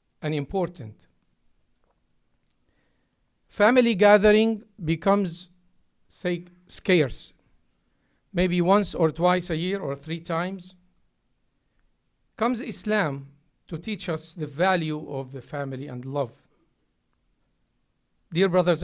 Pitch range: 150-195 Hz